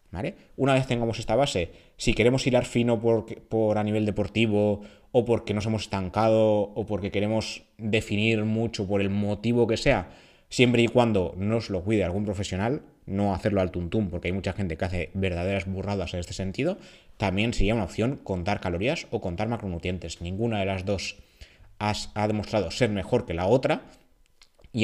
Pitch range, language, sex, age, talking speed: 95-110 Hz, Spanish, male, 20-39, 175 wpm